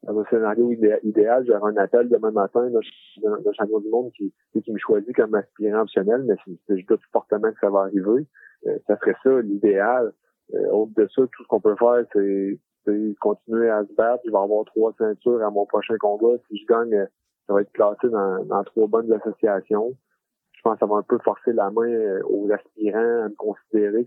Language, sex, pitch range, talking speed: French, male, 105-125 Hz, 210 wpm